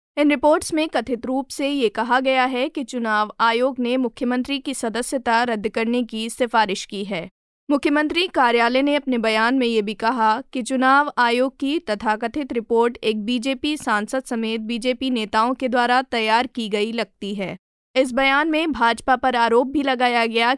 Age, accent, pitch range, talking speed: 20-39, native, 225-270 Hz, 175 wpm